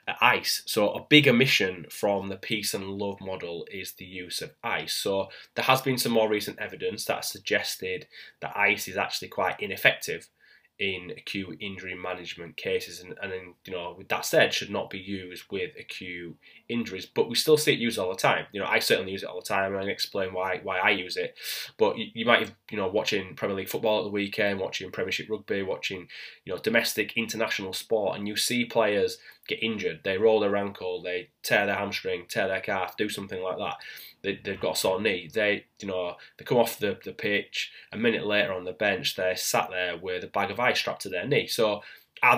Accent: British